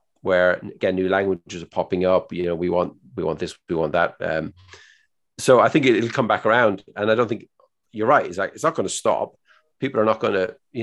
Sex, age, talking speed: male, 40-59, 245 wpm